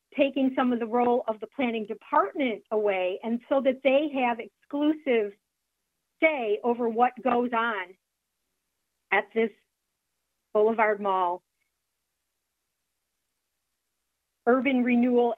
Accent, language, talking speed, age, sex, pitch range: American, English, 105 wpm, 40-59, female, 220-265 Hz